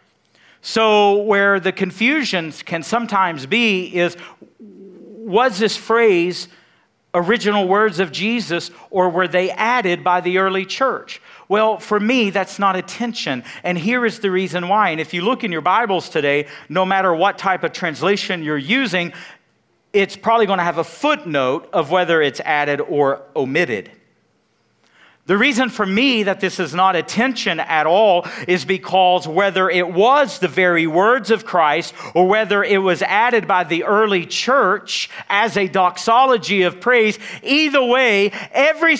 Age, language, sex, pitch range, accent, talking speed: 50-69, English, male, 175-225 Hz, American, 160 wpm